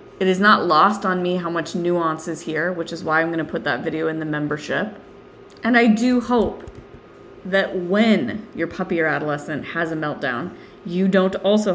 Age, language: 20-39, English